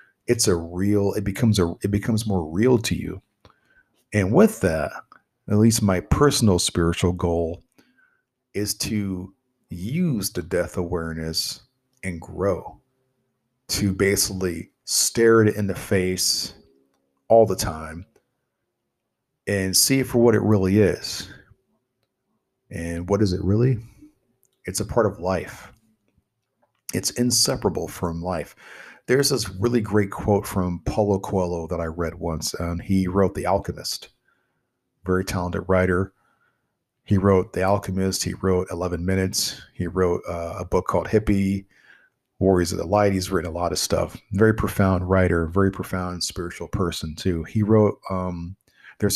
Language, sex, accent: English, male, American